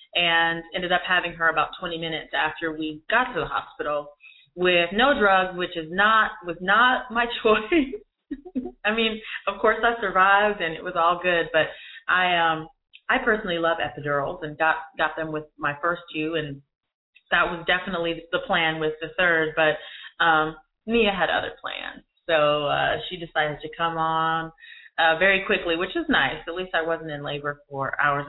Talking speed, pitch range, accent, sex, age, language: 180 wpm, 155-185 Hz, American, female, 30-49, English